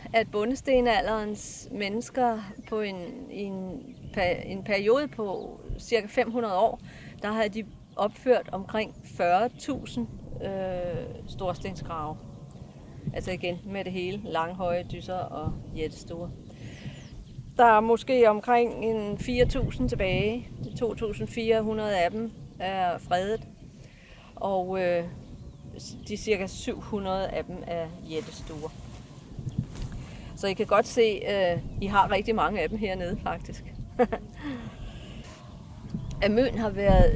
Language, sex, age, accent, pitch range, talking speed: Danish, female, 40-59, native, 180-230 Hz, 110 wpm